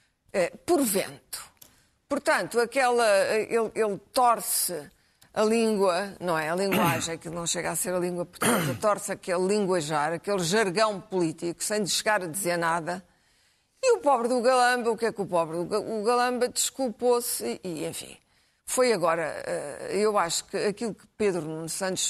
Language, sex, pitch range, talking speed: Portuguese, female, 175-225 Hz, 155 wpm